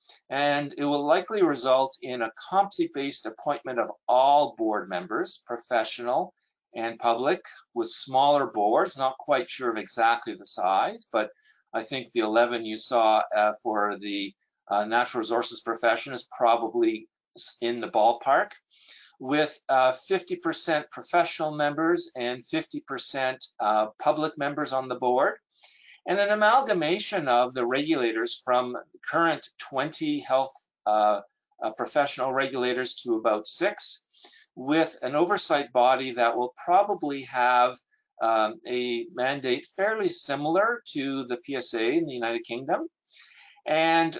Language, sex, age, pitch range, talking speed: English, male, 50-69, 125-180 Hz, 130 wpm